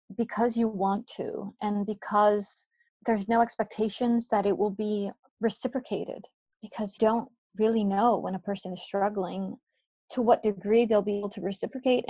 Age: 30-49